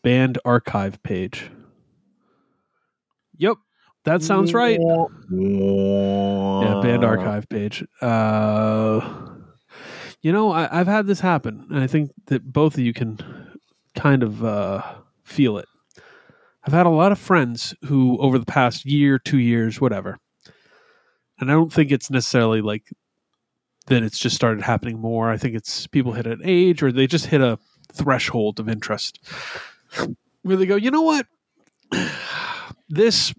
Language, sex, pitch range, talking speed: English, male, 120-185 Hz, 145 wpm